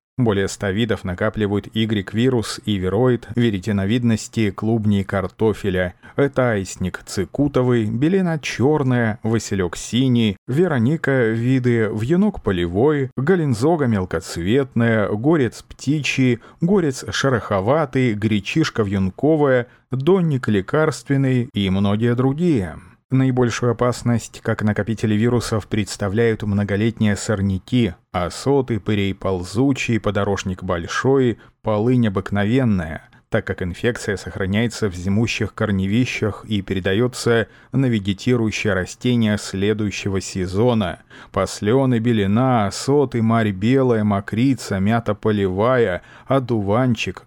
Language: Russian